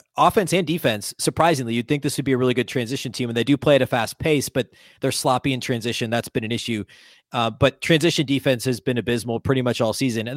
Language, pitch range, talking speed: English, 120-155 Hz, 250 wpm